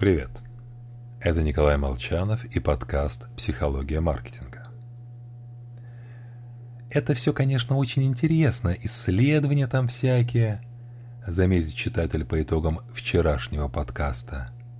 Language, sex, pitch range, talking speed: Russian, male, 100-120 Hz, 90 wpm